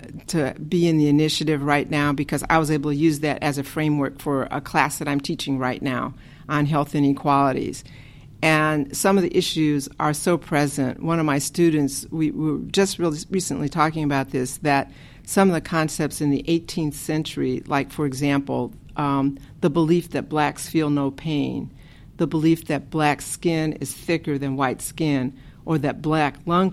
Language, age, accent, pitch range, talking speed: English, 50-69, American, 140-160 Hz, 185 wpm